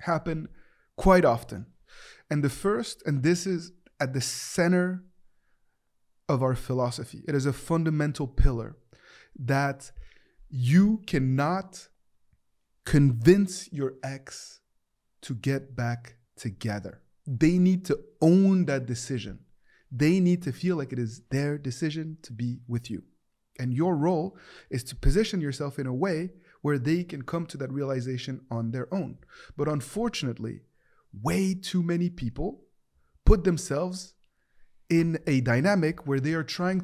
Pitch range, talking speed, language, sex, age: 125-175 Hz, 135 wpm, English, male, 30-49